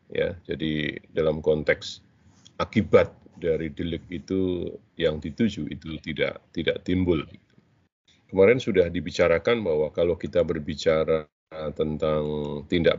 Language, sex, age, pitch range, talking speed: Indonesian, male, 40-59, 85-115 Hz, 105 wpm